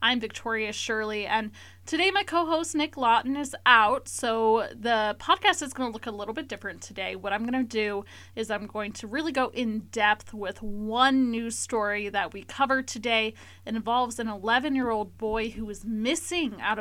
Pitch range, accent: 215-255 Hz, American